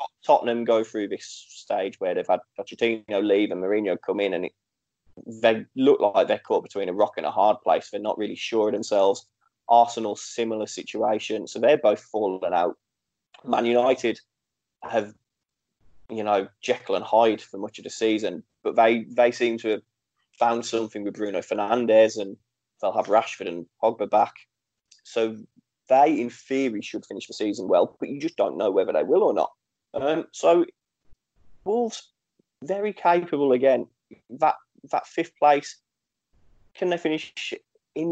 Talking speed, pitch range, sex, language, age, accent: 170 wpm, 110-155 Hz, male, English, 20-39, British